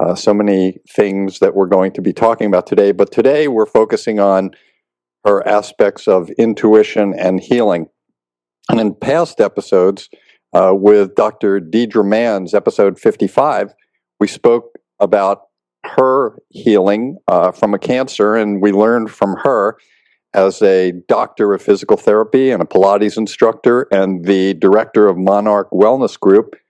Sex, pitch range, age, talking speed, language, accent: male, 95-105 Hz, 50-69, 145 wpm, English, American